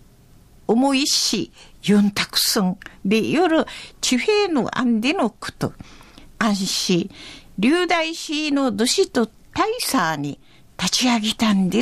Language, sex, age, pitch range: Japanese, female, 60-79, 220-320 Hz